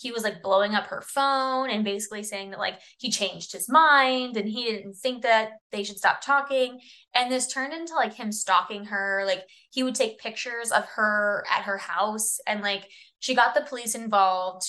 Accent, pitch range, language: American, 200-245 Hz, English